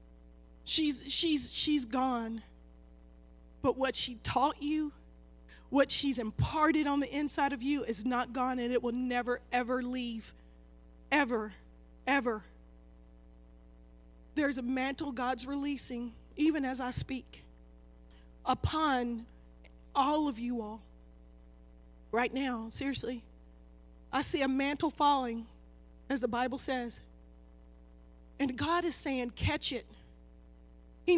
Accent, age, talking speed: American, 40-59, 115 wpm